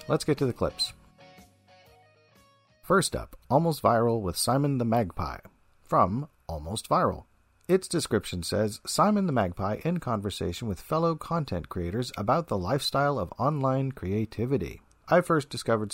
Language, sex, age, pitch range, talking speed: English, male, 40-59, 95-130 Hz, 140 wpm